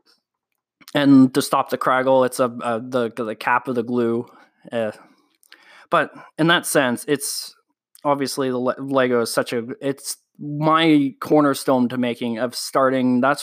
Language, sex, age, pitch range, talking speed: English, male, 20-39, 125-145 Hz, 155 wpm